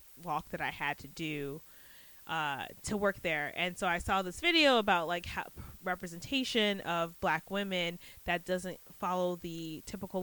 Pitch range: 170-205 Hz